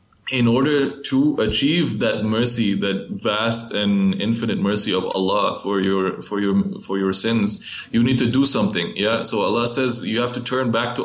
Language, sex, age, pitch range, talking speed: English, male, 20-39, 95-115 Hz, 190 wpm